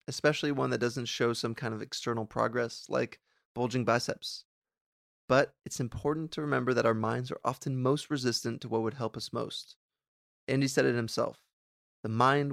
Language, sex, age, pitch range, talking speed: English, male, 20-39, 115-135 Hz, 175 wpm